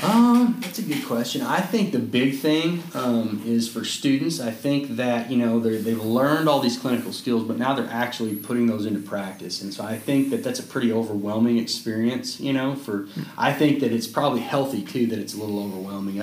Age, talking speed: 30-49, 215 wpm